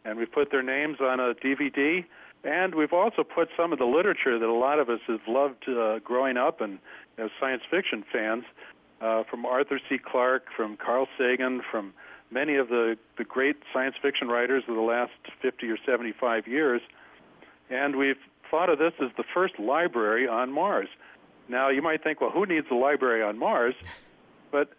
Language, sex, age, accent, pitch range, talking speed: English, male, 60-79, American, 115-140 Hz, 190 wpm